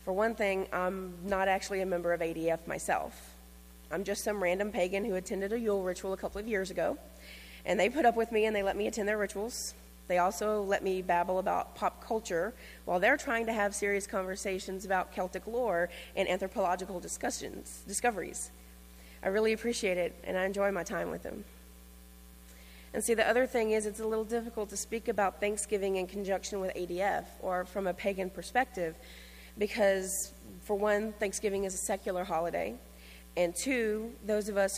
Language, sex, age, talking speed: English, female, 30-49, 185 wpm